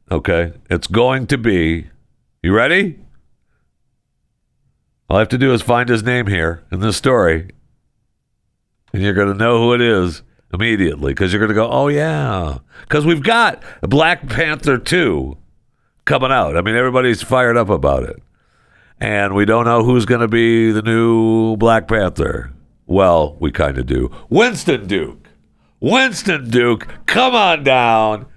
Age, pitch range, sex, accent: 60-79, 85-140 Hz, male, American